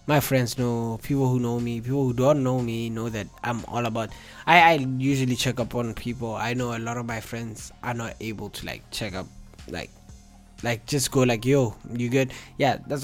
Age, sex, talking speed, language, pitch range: 20-39, male, 220 wpm, English, 120-135 Hz